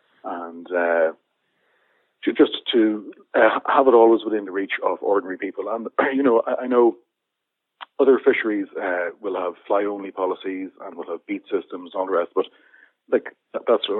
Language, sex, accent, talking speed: English, male, Irish, 170 wpm